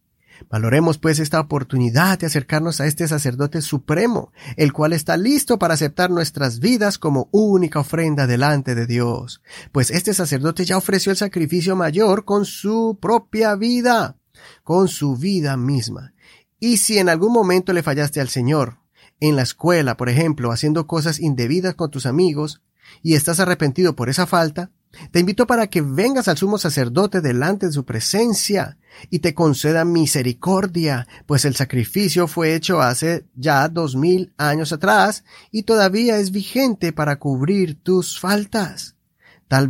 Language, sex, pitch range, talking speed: Spanish, male, 140-190 Hz, 155 wpm